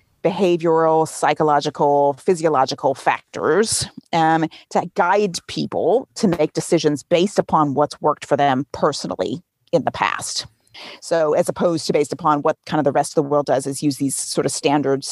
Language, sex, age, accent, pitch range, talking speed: English, female, 40-59, American, 145-180 Hz, 165 wpm